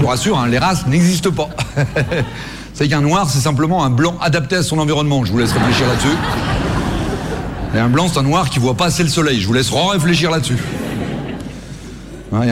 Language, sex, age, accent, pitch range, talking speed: French, male, 40-59, French, 135-180 Hz, 195 wpm